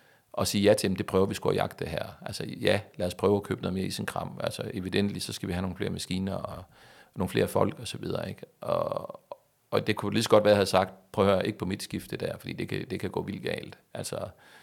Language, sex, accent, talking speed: Danish, male, native, 285 wpm